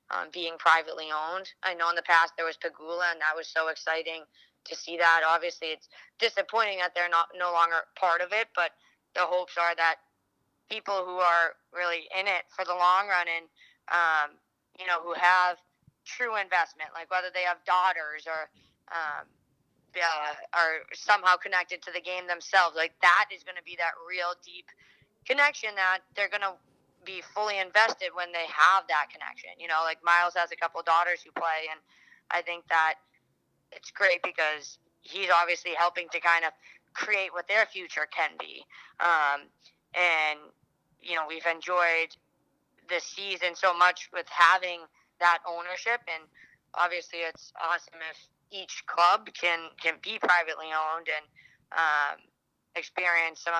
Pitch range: 160-180 Hz